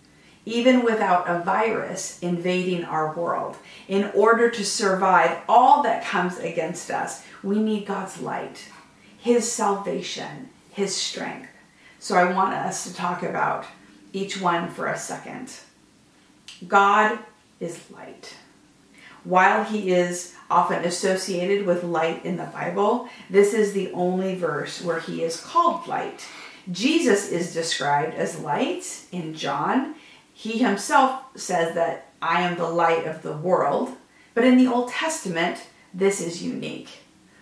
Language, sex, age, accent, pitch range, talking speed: English, female, 40-59, American, 175-235 Hz, 135 wpm